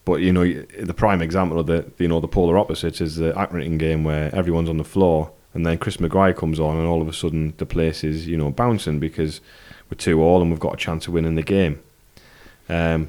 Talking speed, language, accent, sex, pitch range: 245 wpm, English, British, male, 80-95 Hz